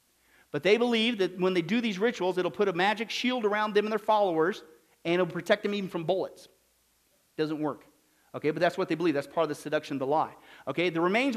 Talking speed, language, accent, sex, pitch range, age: 230 wpm, English, American, male, 170-205 Hz, 50-69